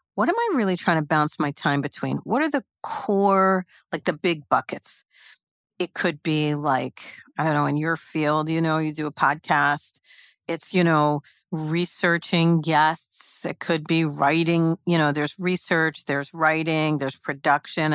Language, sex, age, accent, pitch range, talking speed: English, female, 50-69, American, 150-175 Hz, 170 wpm